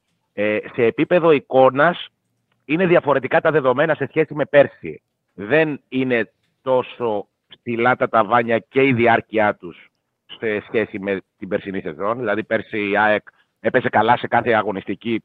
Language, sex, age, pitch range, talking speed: Greek, male, 30-49, 105-140 Hz, 145 wpm